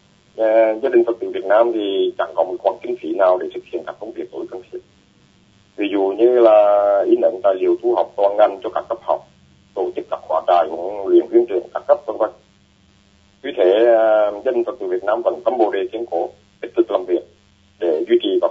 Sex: male